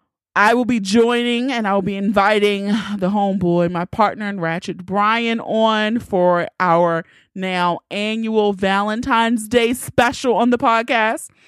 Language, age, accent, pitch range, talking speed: English, 30-49, American, 180-235 Hz, 135 wpm